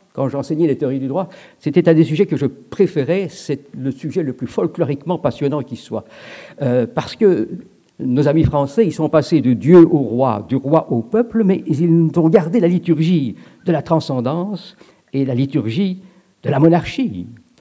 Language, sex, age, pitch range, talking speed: French, male, 50-69, 135-195 Hz, 185 wpm